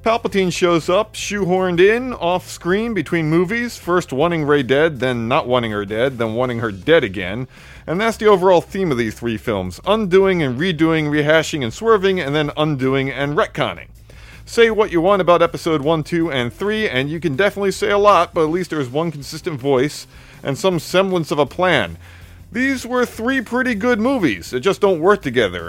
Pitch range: 140-195 Hz